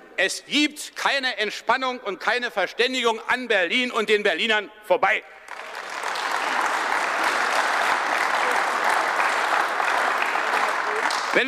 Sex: male